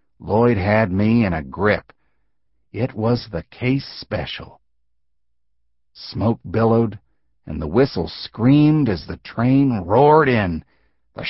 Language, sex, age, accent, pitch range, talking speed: English, male, 60-79, American, 90-145 Hz, 120 wpm